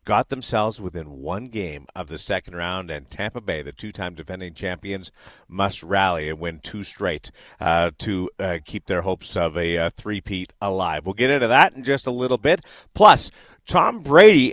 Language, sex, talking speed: English, male, 185 wpm